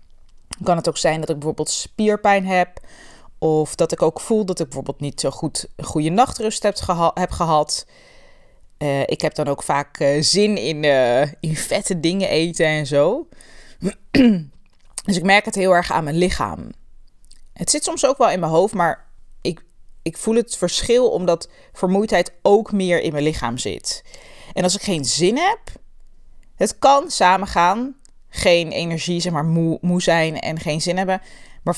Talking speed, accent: 175 wpm, Dutch